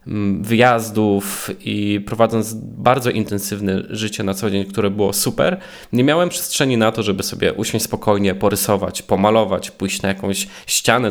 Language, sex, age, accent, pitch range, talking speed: Polish, male, 20-39, native, 105-120 Hz, 145 wpm